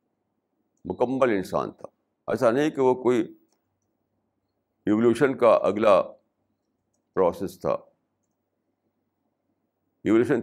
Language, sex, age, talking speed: Urdu, male, 60-79, 80 wpm